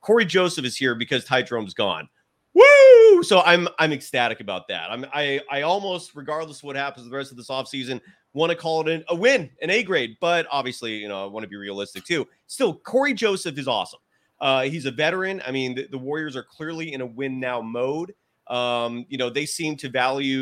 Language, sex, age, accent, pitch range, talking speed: English, male, 30-49, American, 130-165 Hz, 215 wpm